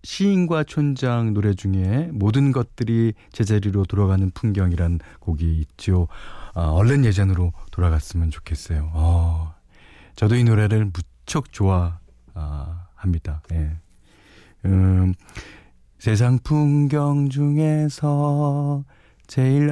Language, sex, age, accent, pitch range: Korean, male, 40-59, native, 85-135 Hz